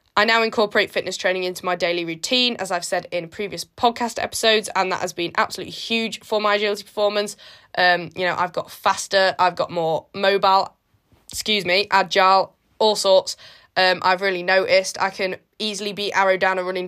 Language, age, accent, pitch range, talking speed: English, 10-29, British, 180-205 Hz, 190 wpm